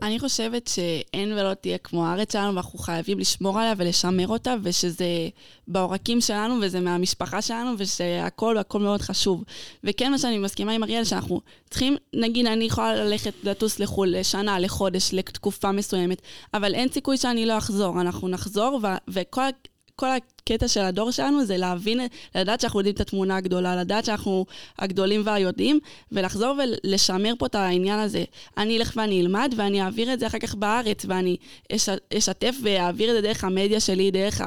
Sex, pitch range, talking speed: female, 190-225 Hz, 165 wpm